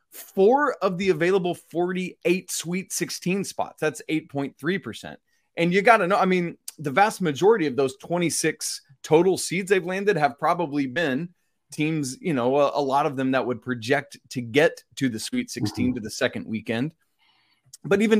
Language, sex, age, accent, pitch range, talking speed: English, male, 30-49, American, 145-210 Hz, 175 wpm